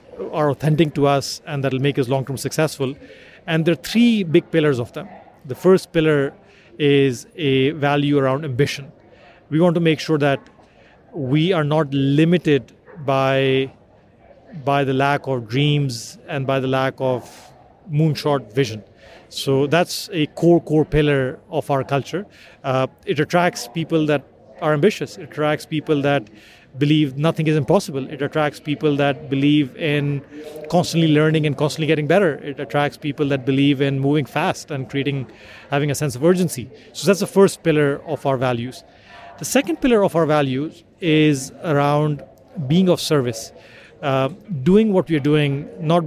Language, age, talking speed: English, 40-59, 165 wpm